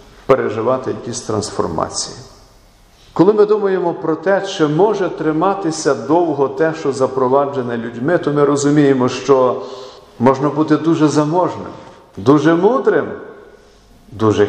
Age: 50-69